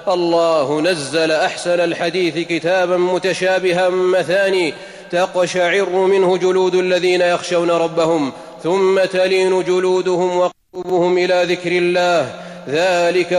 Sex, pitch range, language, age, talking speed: male, 170-180 Hz, Arabic, 30-49, 95 wpm